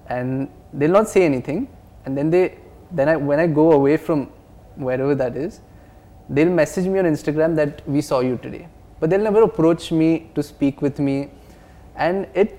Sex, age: male, 20-39